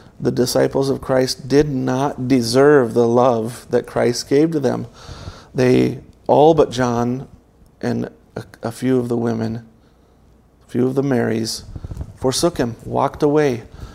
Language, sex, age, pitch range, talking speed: English, male, 40-59, 115-140 Hz, 145 wpm